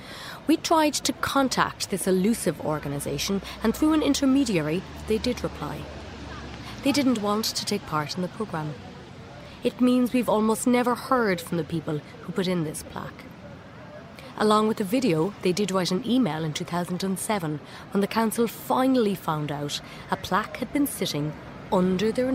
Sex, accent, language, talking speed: female, Irish, English, 165 wpm